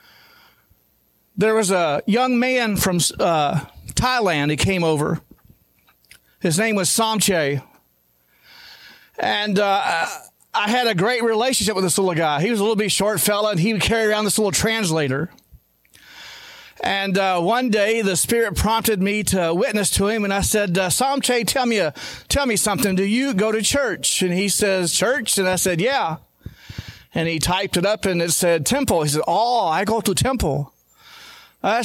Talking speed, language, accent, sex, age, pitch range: 170 wpm, English, American, male, 40-59, 180-245 Hz